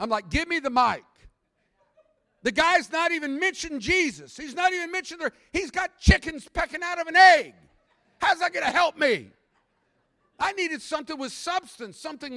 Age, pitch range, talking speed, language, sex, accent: 50-69, 185-310 Hz, 180 wpm, English, male, American